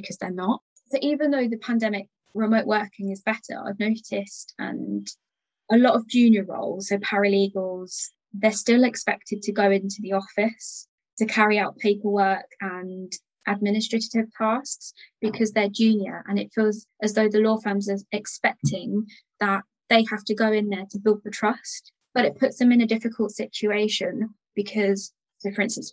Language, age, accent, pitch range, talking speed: English, 20-39, British, 200-230 Hz, 170 wpm